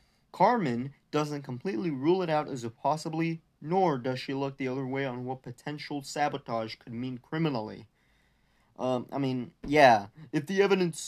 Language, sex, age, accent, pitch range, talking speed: English, male, 20-39, American, 125-160 Hz, 160 wpm